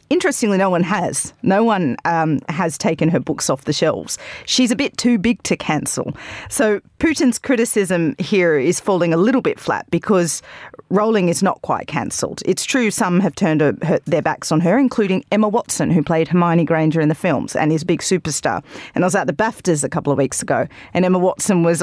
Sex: female